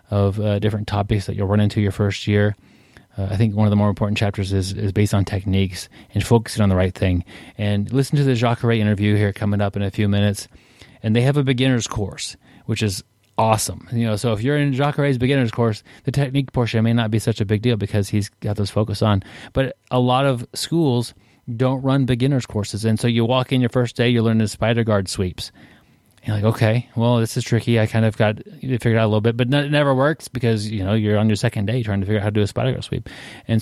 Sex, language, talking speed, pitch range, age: male, English, 250 wpm, 100-120 Hz, 30-49